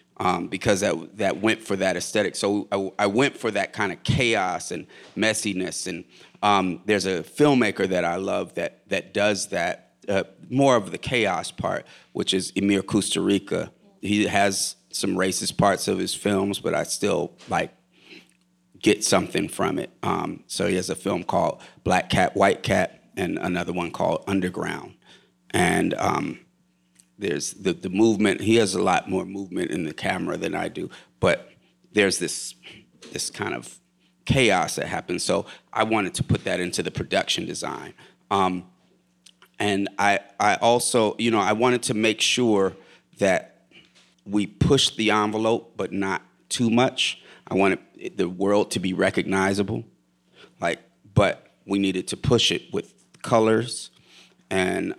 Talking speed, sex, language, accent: 165 wpm, male, English, American